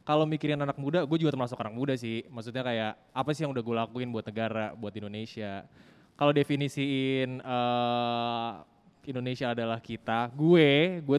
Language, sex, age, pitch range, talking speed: Indonesian, male, 20-39, 120-155 Hz, 165 wpm